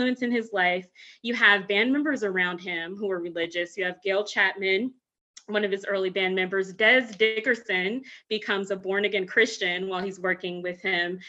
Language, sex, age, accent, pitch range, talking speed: English, female, 20-39, American, 190-245 Hz, 175 wpm